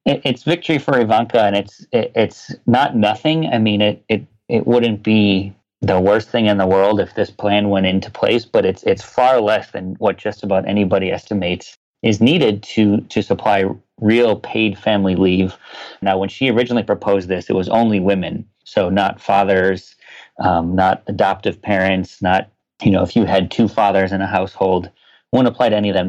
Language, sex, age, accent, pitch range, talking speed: English, male, 30-49, American, 95-115 Hz, 190 wpm